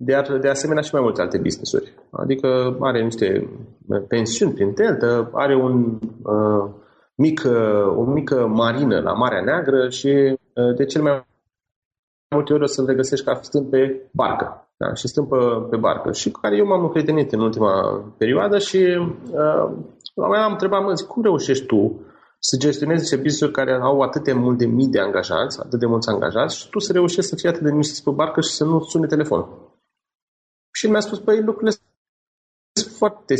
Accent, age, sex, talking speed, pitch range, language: native, 30-49, male, 180 wpm, 130-205 Hz, Romanian